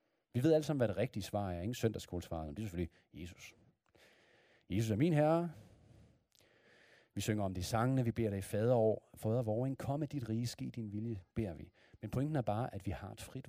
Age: 40-59